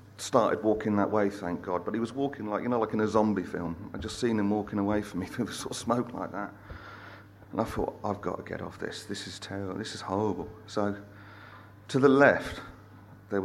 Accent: British